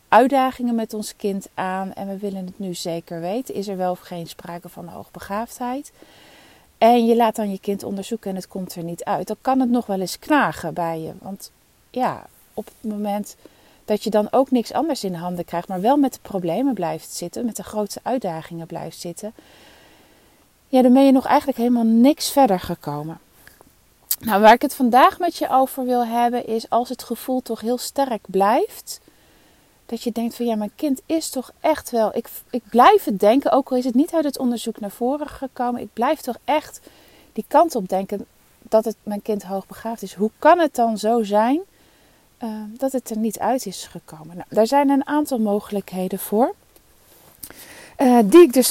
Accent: Dutch